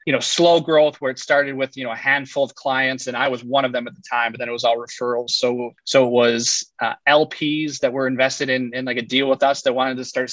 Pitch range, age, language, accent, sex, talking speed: 115-135 Hz, 20-39, English, American, male, 285 wpm